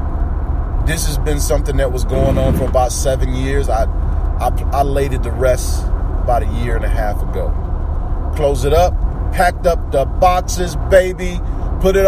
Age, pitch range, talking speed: 30-49, 75-90 Hz, 180 wpm